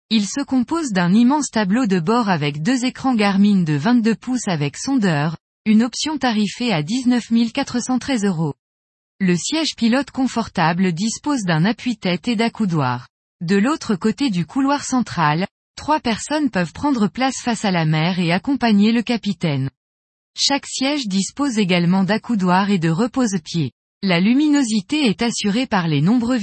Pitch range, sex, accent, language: 175-245 Hz, female, French, French